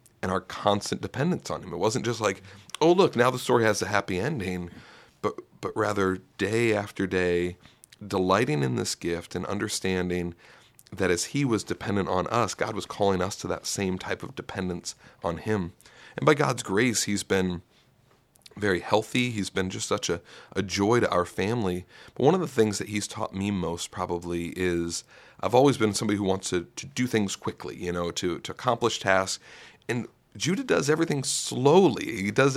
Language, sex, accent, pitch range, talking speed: English, male, American, 90-115 Hz, 190 wpm